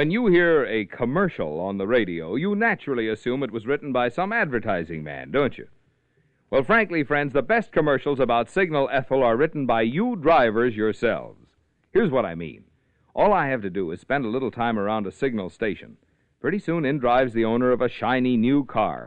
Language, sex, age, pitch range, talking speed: English, male, 50-69, 120-175 Hz, 200 wpm